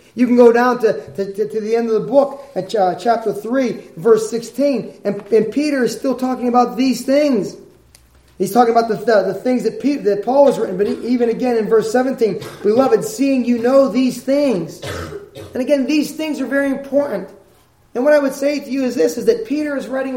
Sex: male